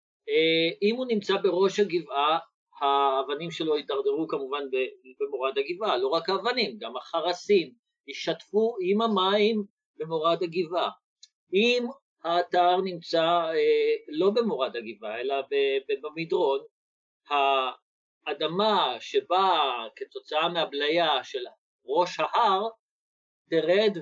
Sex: male